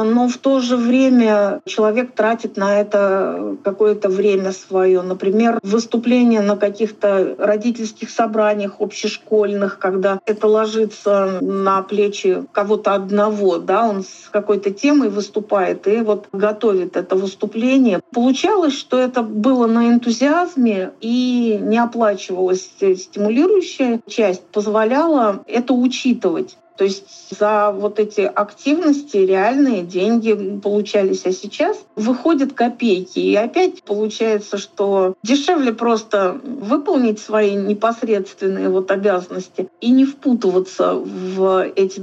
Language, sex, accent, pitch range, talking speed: Russian, female, native, 200-235 Hz, 115 wpm